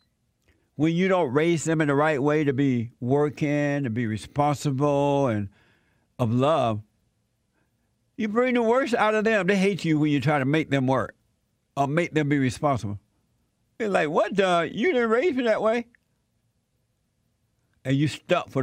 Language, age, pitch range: English, 60-79, 115-165 Hz